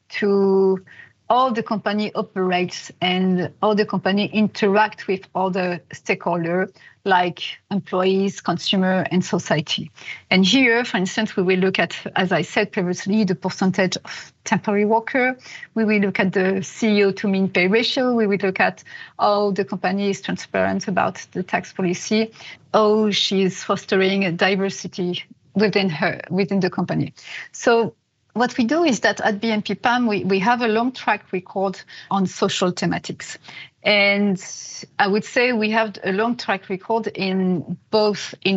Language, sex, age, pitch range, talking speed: English, female, 30-49, 185-215 Hz, 155 wpm